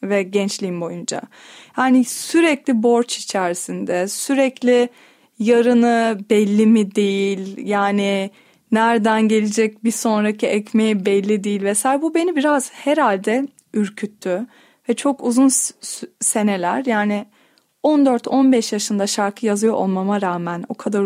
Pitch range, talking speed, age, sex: 205-260 Hz, 115 wpm, 30-49, female